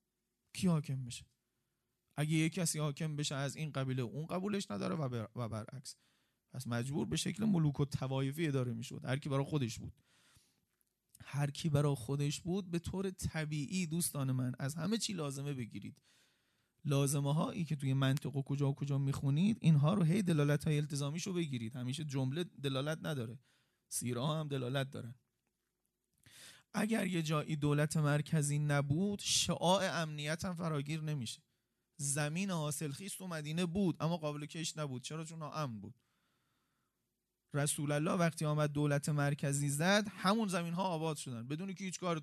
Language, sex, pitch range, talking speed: Persian, male, 135-160 Hz, 160 wpm